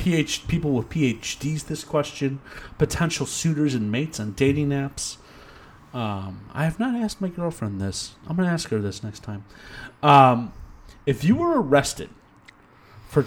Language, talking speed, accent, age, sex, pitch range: English, 155 wpm, American, 30-49, male, 120-165 Hz